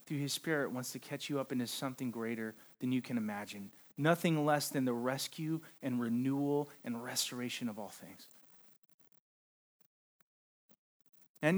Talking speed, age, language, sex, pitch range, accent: 140 wpm, 30-49, English, male, 130-185 Hz, American